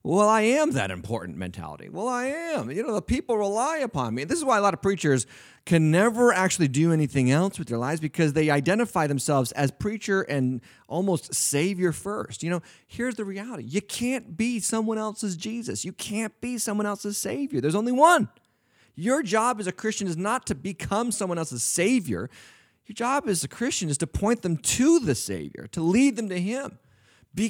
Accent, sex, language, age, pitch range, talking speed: American, male, English, 30-49, 135-210 Hz, 200 wpm